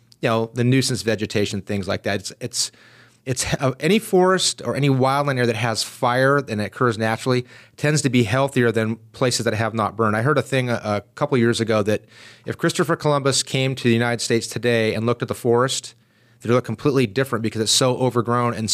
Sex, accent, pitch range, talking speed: male, American, 115-135 Hz, 220 wpm